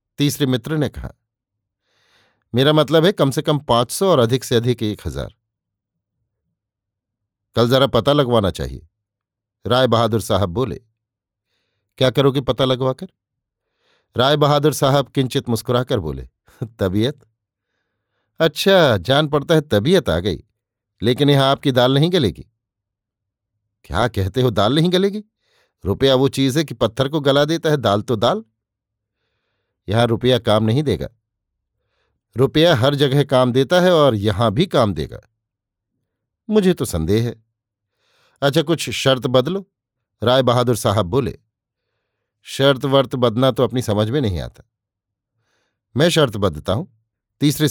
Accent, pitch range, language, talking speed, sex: native, 105-140 Hz, Hindi, 140 wpm, male